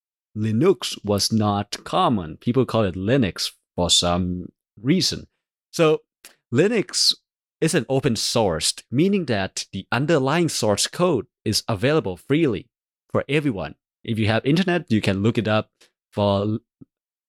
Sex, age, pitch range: male, 30-49, 105-140 Hz